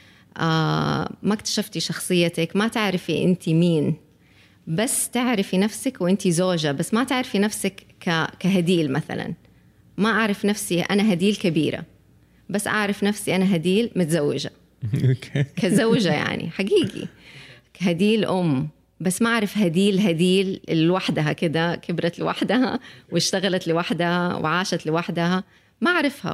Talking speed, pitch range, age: 115 wpm, 165-210 Hz, 20-39